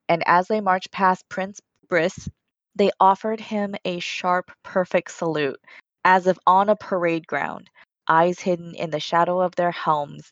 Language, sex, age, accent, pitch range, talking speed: English, female, 20-39, American, 155-190 Hz, 165 wpm